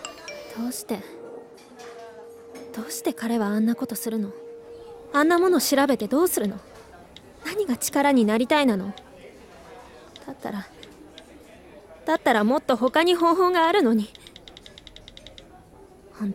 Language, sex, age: Japanese, female, 20-39